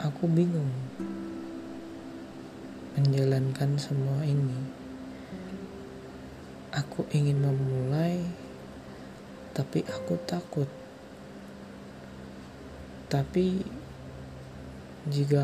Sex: male